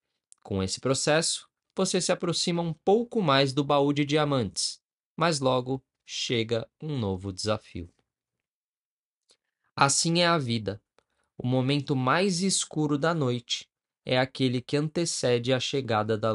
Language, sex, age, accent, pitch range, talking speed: Portuguese, male, 20-39, Brazilian, 115-155 Hz, 130 wpm